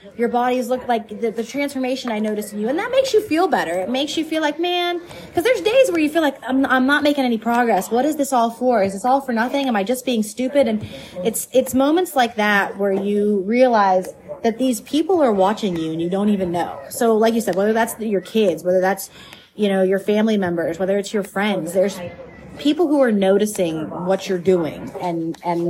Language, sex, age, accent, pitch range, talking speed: English, female, 30-49, American, 180-230 Hz, 235 wpm